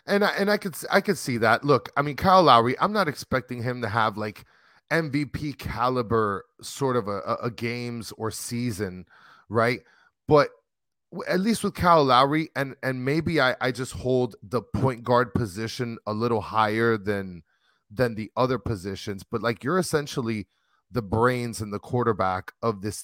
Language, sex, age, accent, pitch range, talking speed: English, male, 30-49, American, 105-140 Hz, 175 wpm